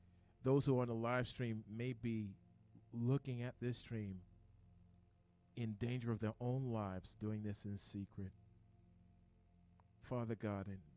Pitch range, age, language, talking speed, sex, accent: 100-125 Hz, 40-59, English, 135 wpm, male, American